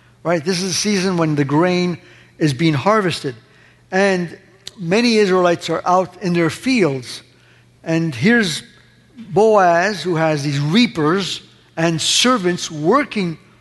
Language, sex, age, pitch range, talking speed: English, male, 50-69, 150-195 Hz, 130 wpm